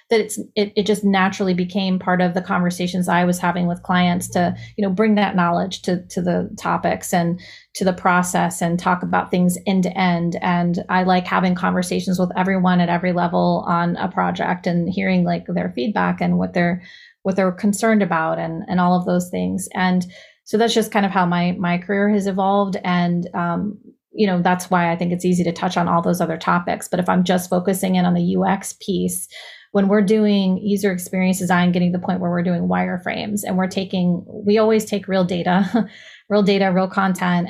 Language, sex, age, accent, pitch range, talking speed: English, female, 30-49, American, 175-195 Hz, 215 wpm